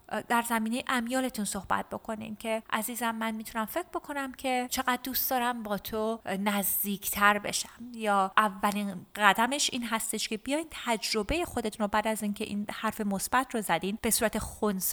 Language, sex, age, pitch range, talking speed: Persian, female, 30-49, 195-240 Hz, 160 wpm